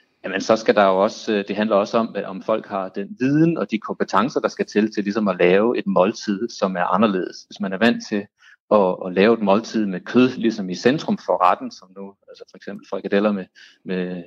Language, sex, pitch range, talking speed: Danish, male, 95-110 Hz, 230 wpm